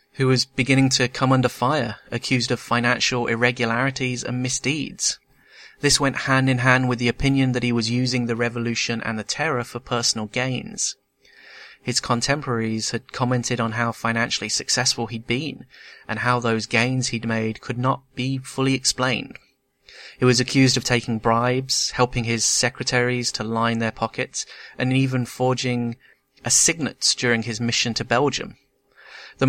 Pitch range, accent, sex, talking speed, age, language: 115-130 Hz, British, male, 155 wpm, 30-49, English